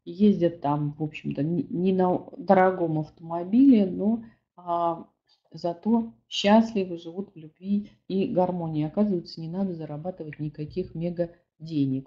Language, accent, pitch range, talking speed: Russian, native, 175-215 Hz, 120 wpm